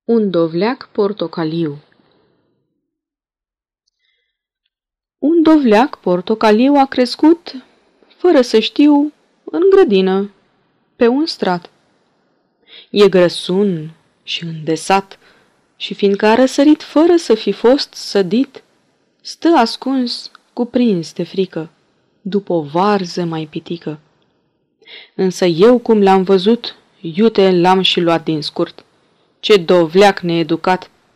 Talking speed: 100 wpm